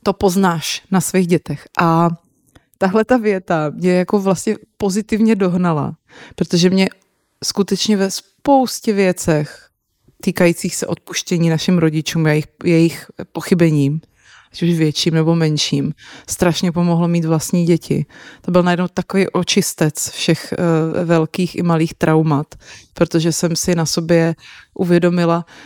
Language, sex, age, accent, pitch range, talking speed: Czech, female, 30-49, native, 160-185 Hz, 130 wpm